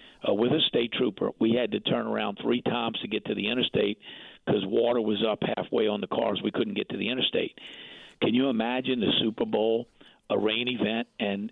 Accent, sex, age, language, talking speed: American, male, 50-69, English, 215 wpm